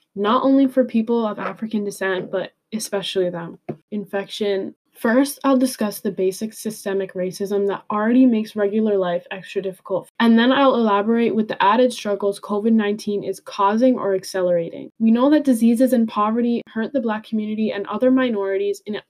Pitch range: 195-240 Hz